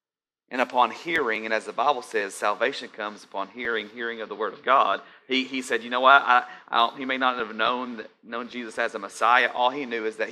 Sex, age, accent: male, 30-49, American